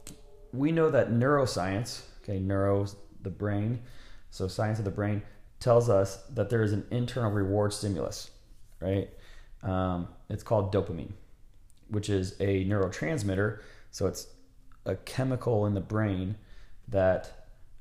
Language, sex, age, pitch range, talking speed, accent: English, male, 30-49, 100-115 Hz, 130 wpm, American